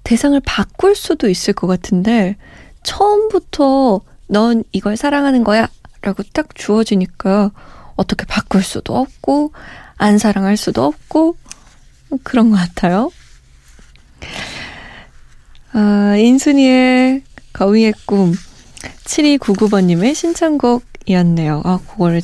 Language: Korean